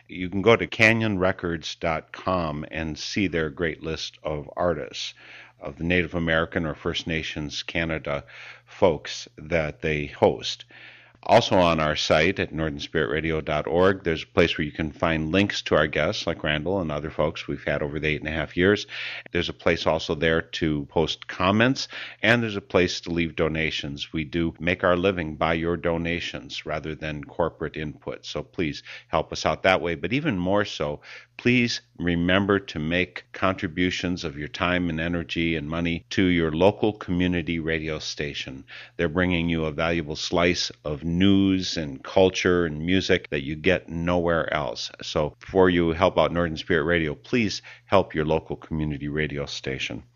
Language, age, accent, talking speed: English, 50-69, American, 170 wpm